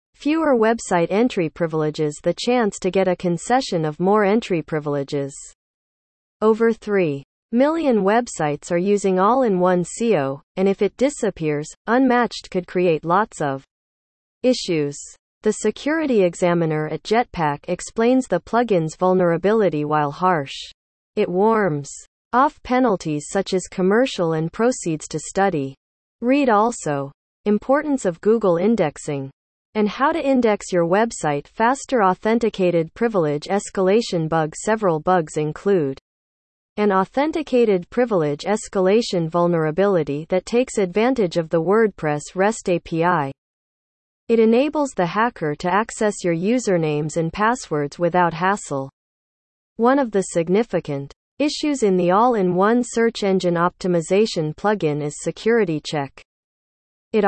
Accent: American